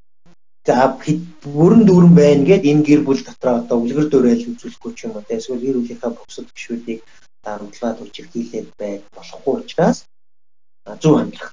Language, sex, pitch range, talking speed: English, male, 120-165 Hz, 150 wpm